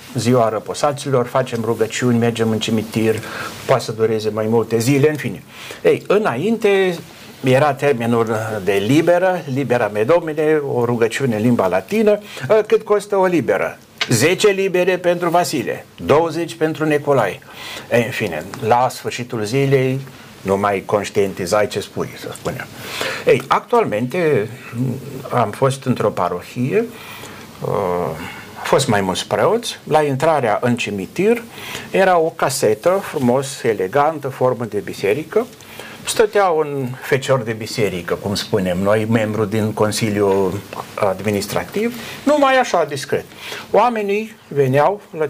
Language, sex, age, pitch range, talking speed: Romanian, male, 60-79, 115-180 Hz, 125 wpm